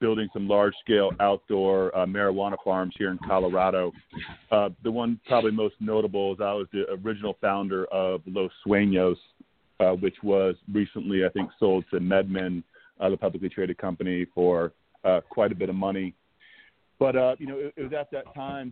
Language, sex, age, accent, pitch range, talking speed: English, male, 40-59, American, 95-110 Hz, 180 wpm